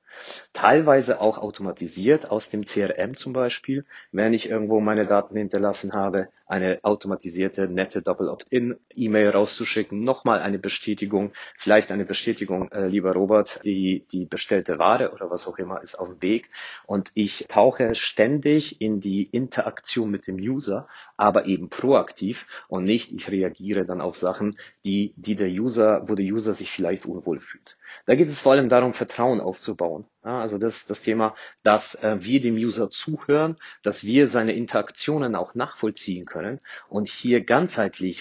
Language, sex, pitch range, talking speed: German, male, 100-120 Hz, 160 wpm